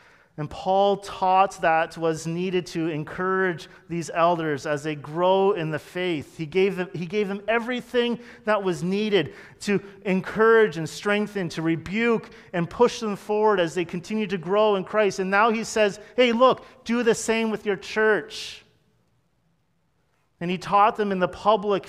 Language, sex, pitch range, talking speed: English, male, 140-195 Hz, 170 wpm